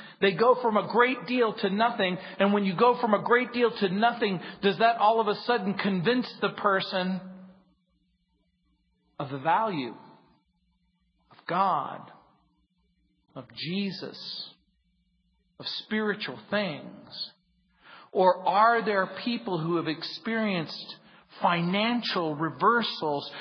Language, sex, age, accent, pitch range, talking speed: English, male, 40-59, American, 165-205 Hz, 120 wpm